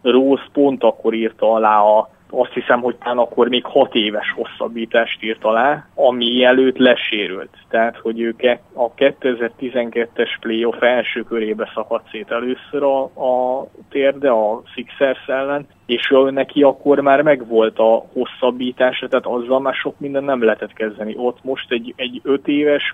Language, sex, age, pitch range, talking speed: Hungarian, male, 20-39, 115-135 Hz, 150 wpm